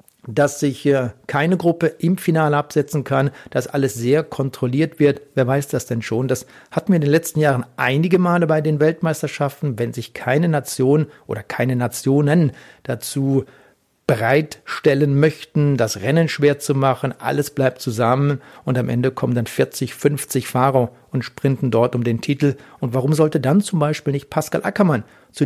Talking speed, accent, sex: 170 wpm, German, male